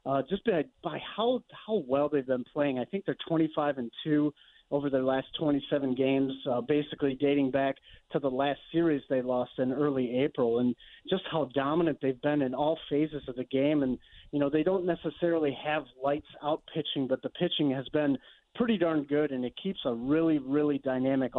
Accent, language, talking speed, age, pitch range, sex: American, English, 200 wpm, 30-49, 135-160 Hz, male